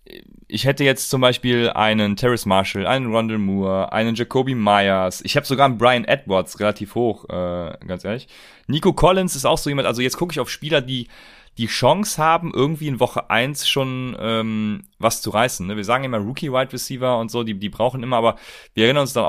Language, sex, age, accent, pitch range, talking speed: German, male, 30-49, German, 100-125 Hz, 210 wpm